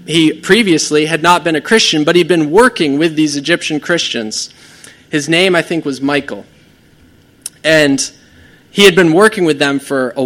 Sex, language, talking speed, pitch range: male, English, 175 wpm, 135-165 Hz